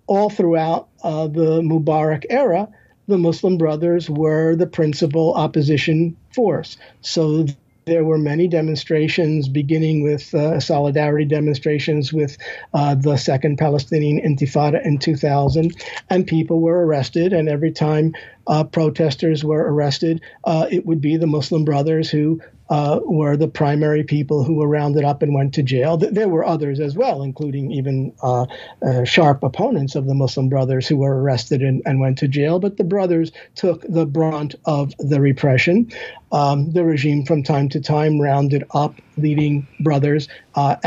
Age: 50-69